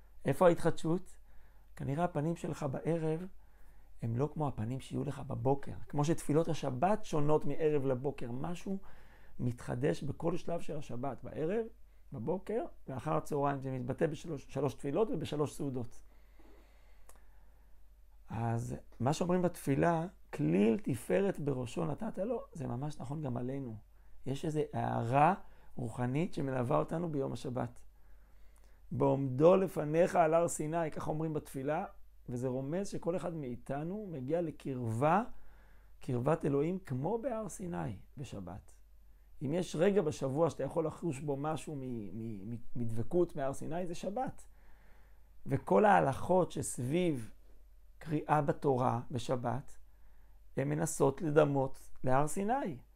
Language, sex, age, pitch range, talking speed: Hebrew, male, 40-59, 125-165 Hz, 120 wpm